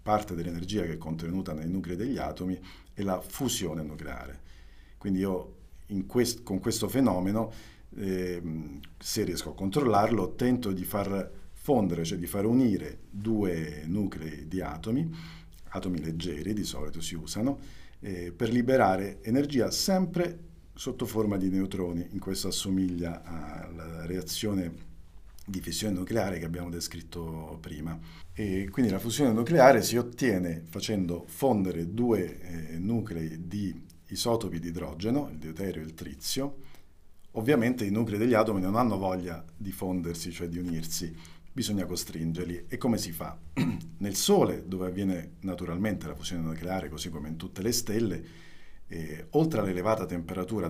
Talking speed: 145 wpm